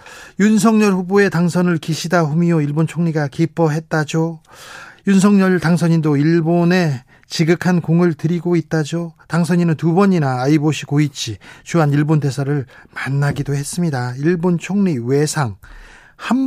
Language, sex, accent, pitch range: Korean, male, native, 150-190 Hz